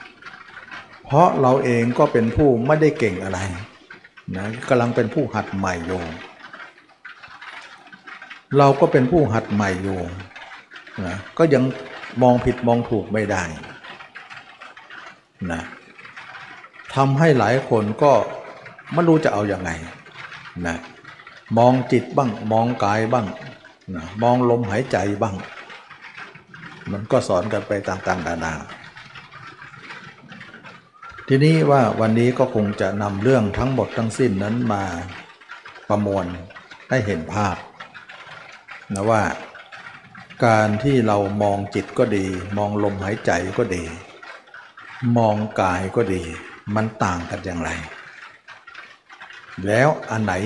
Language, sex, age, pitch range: Thai, male, 60-79, 95-125 Hz